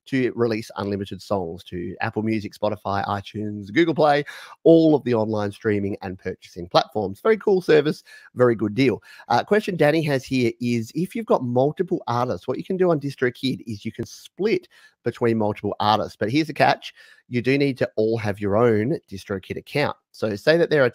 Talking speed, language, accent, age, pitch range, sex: 195 wpm, English, Australian, 30-49, 105-145 Hz, male